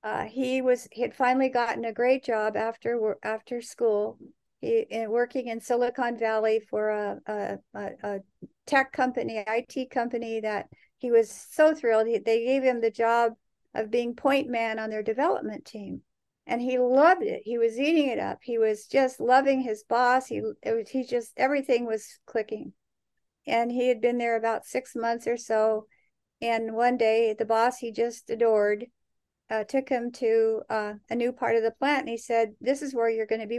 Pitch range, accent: 225-255 Hz, American